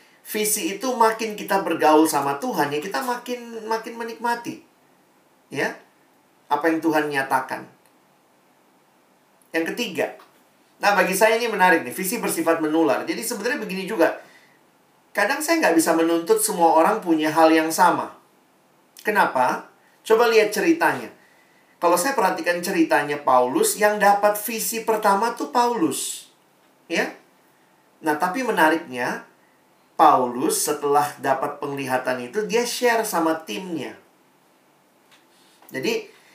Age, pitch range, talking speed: 40-59, 150-220 Hz, 120 wpm